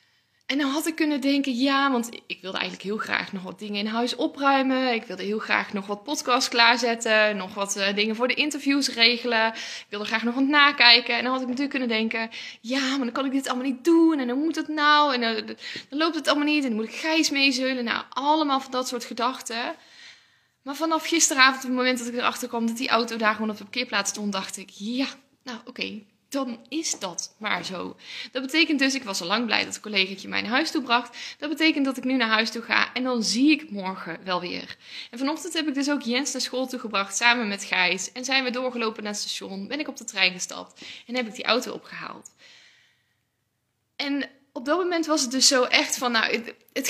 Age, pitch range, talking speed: 20-39, 230-280 Hz, 235 wpm